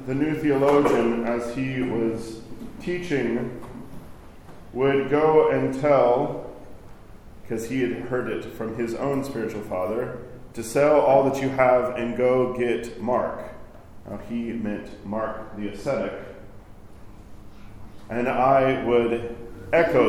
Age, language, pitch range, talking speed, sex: 40-59, English, 105-130 Hz, 120 wpm, male